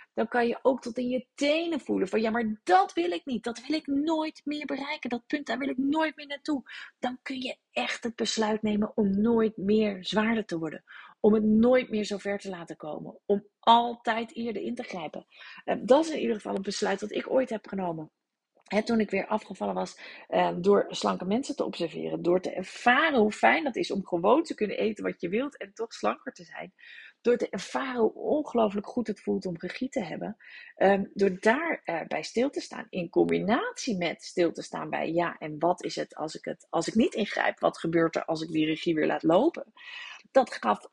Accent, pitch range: Dutch, 190-265 Hz